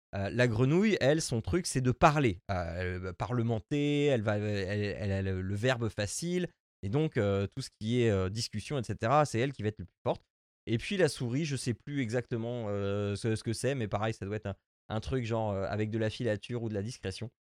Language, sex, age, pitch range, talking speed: French, male, 20-39, 100-140 Hz, 245 wpm